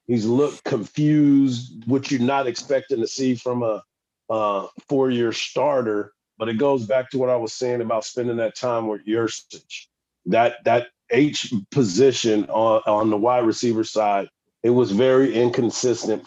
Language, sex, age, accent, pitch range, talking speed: English, male, 40-59, American, 110-135 Hz, 160 wpm